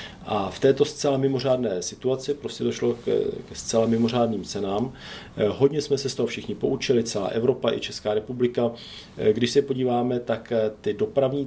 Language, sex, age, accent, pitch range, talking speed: Czech, male, 40-59, native, 105-125 Hz, 155 wpm